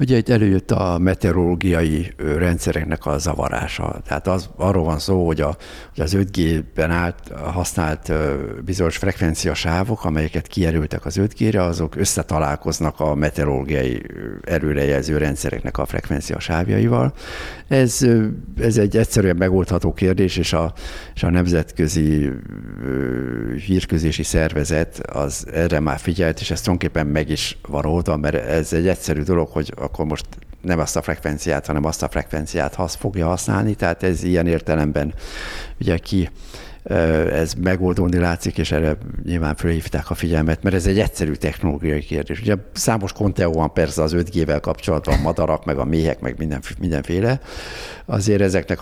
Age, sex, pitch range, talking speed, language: 60-79, male, 75-95 Hz, 140 wpm, Hungarian